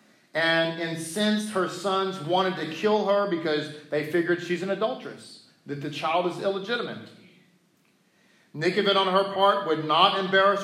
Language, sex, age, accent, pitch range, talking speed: English, male, 40-59, American, 155-195 Hz, 145 wpm